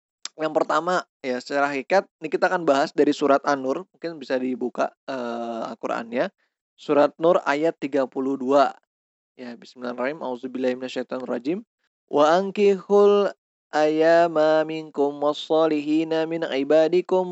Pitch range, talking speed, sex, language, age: 140-180 Hz, 120 wpm, male, Indonesian, 20-39